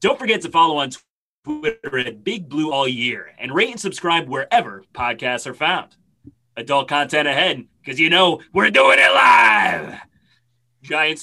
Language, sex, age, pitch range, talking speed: English, male, 30-49, 120-190 Hz, 160 wpm